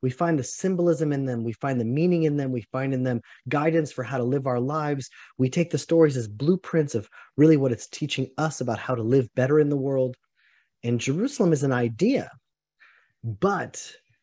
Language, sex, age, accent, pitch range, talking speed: English, male, 30-49, American, 120-155 Hz, 205 wpm